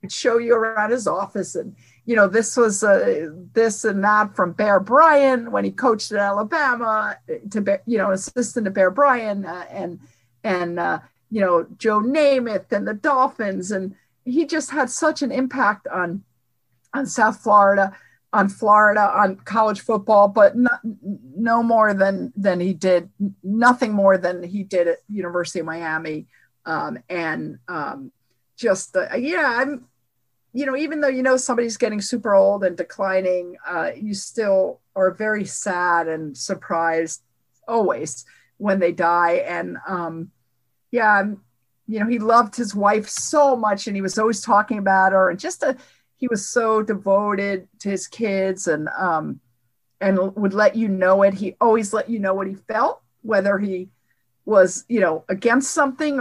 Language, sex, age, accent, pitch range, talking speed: English, female, 50-69, American, 185-235 Hz, 165 wpm